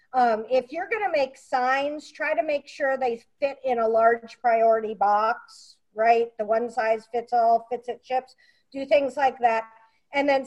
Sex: female